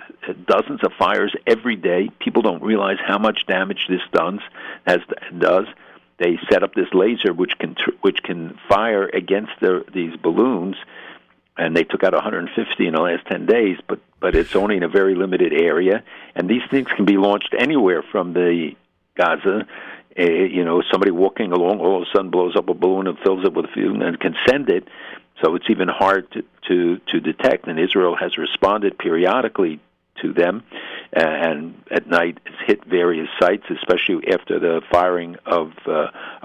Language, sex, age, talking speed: English, male, 60-79, 180 wpm